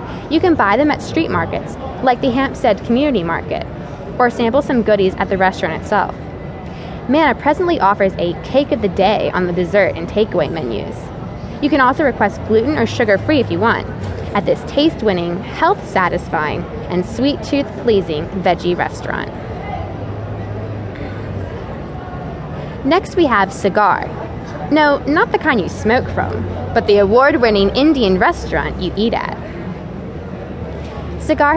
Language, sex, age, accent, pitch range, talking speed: English, female, 20-39, American, 185-275 Hz, 140 wpm